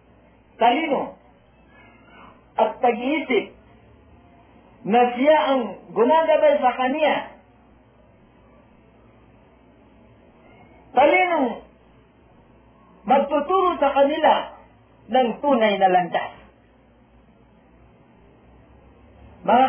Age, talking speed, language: 50-69, 55 wpm, Filipino